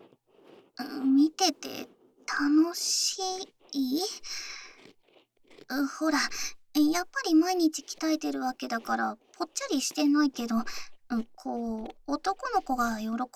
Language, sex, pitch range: Japanese, male, 245-360 Hz